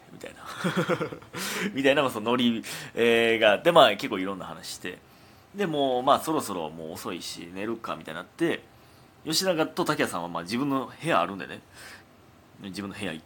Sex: male